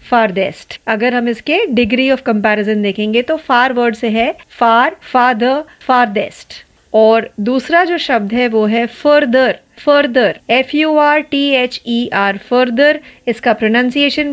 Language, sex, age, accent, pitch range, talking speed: Marathi, female, 30-49, native, 230-295 Hz, 115 wpm